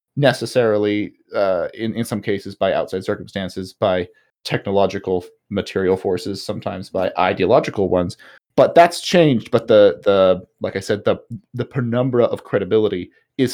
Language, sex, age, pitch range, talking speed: English, male, 30-49, 100-135 Hz, 140 wpm